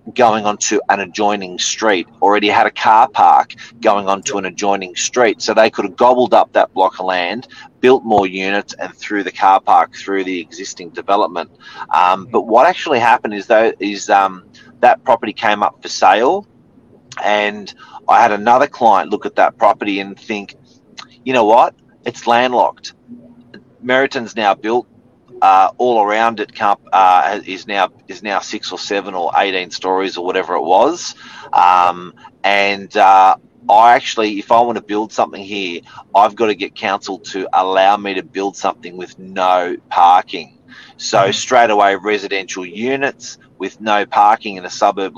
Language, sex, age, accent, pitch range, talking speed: English, male, 30-49, Australian, 95-110 Hz, 170 wpm